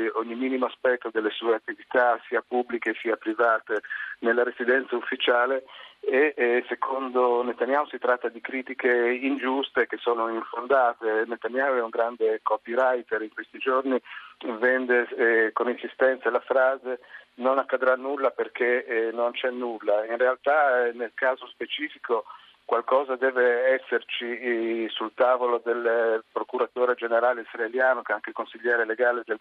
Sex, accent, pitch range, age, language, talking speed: male, native, 120-135 Hz, 50-69, Italian, 140 wpm